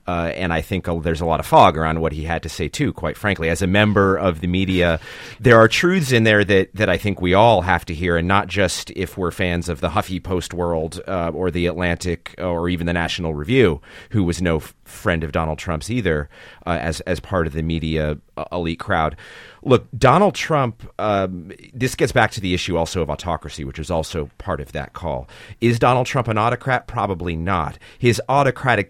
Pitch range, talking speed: 85-110 Hz, 220 wpm